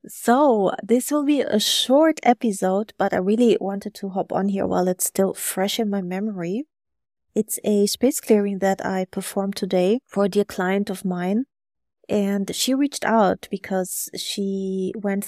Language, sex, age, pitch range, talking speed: English, female, 20-39, 185-210 Hz, 170 wpm